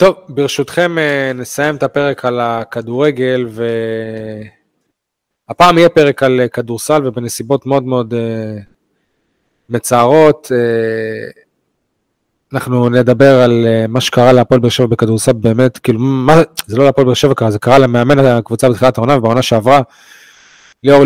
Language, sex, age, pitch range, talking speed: Hebrew, male, 20-39, 115-140 Hz, 120 wpm